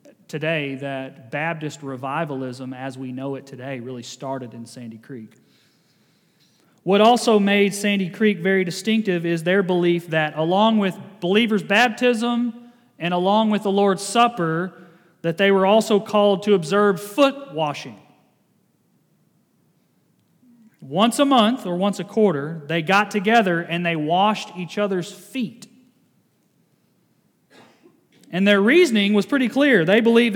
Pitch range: 165-220 Hz